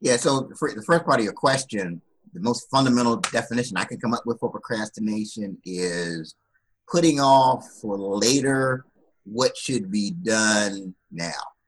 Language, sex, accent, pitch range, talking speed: English, male, American, 110-150 Hz, 150 wpm